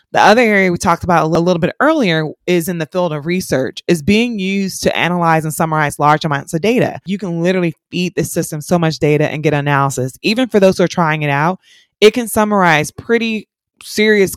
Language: English